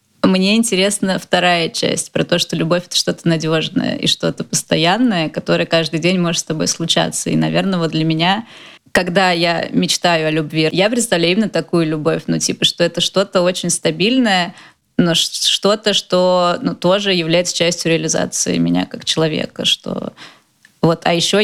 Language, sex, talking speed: Russian, female, 160 wpm